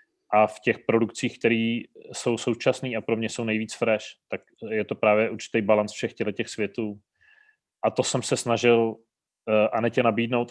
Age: 30-49